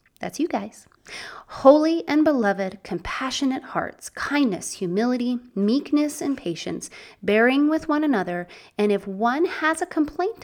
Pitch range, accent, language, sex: 185-270 Hz, American, English, female